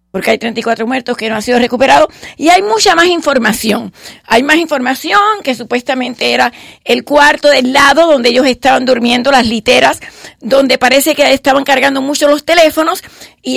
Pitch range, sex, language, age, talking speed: 255-315 Hz, female, English, 40-59, 170 wpm